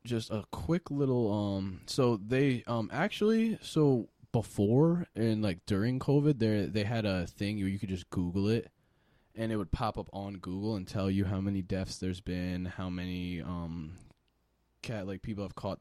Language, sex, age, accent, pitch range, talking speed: English, male, 20-39, American, 95-125 Hz, 185 wpm